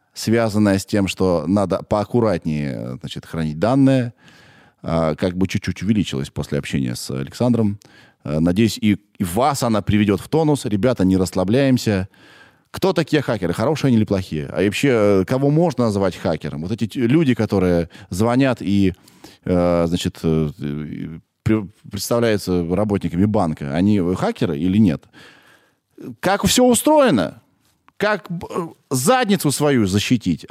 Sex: male